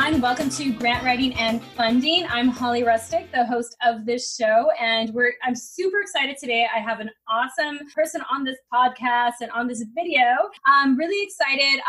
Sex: female